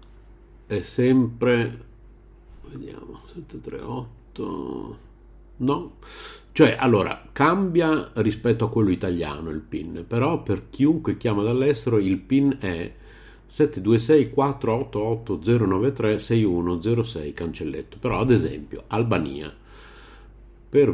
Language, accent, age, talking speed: Italian, native, 50-69, 85 wpm